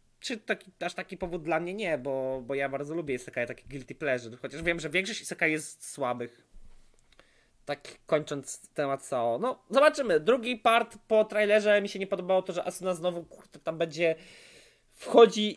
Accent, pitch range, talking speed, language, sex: native, 130-190 Hz, 185 wpm, Polish, male